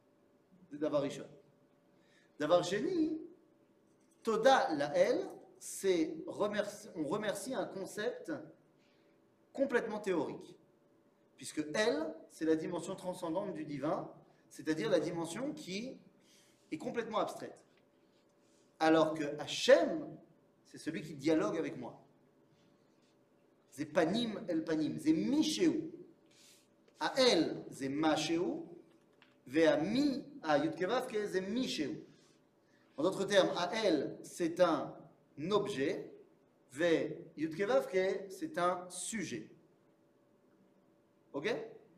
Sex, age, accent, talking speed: male, 40-59, French, 95 wpm